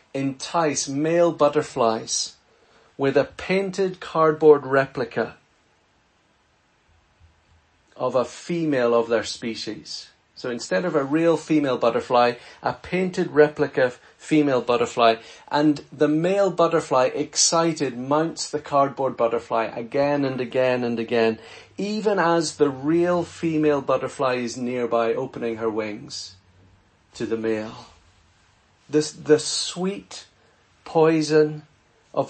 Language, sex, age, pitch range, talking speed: English, male, 40-59, 120-155 Hz, 110 wpm